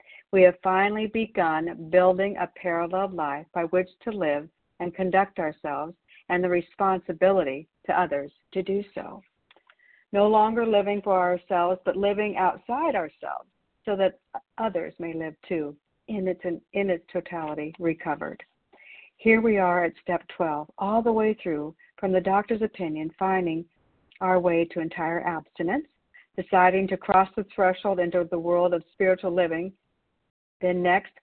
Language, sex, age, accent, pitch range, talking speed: English, female, 60-79, American, 170-195 Hz, 150 wpm